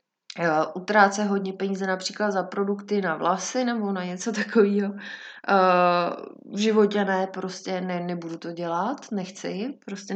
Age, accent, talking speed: 20-39, native, 130 wpm